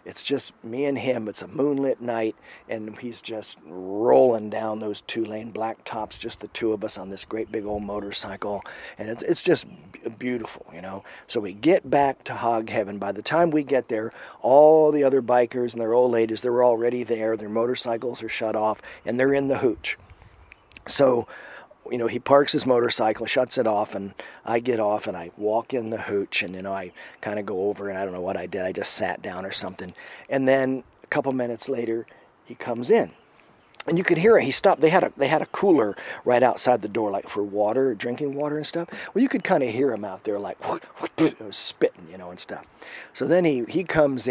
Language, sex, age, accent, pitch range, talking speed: English, male, 40-59, American, 110-135 Hz, 225 wpm